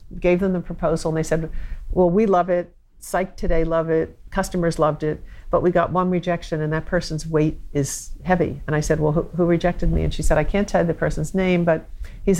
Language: English